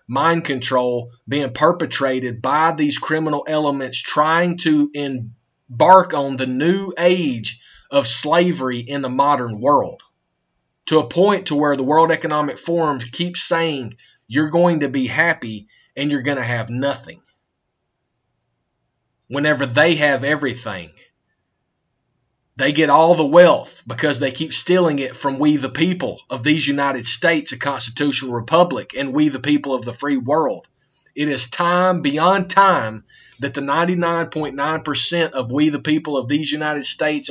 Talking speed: 150 wpm